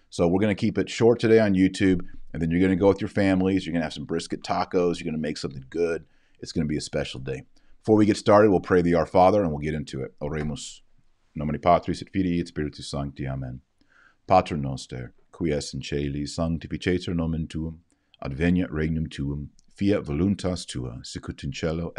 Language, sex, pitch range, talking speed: English, male, 75-90 Hz, 205 wpm